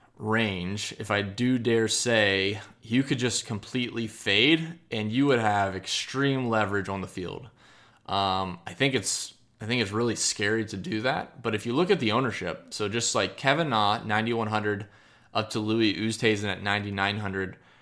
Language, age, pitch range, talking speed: English, 20-39, 100-120 Hz, 180 wpm